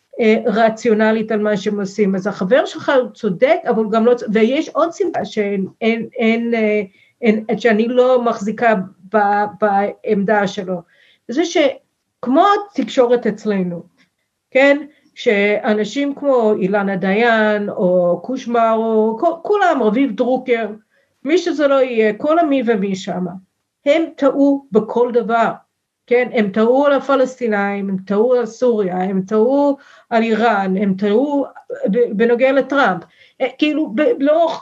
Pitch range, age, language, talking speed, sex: 215-280 Hz, 50-69, Hebrew, 125 wpm, female